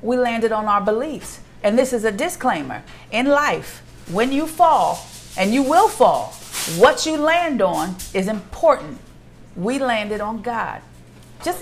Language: English